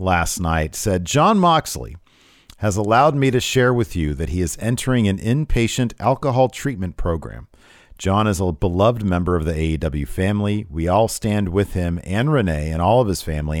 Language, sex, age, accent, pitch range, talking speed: English, male, 40-59, American, 80-105 Hz, 185 wpm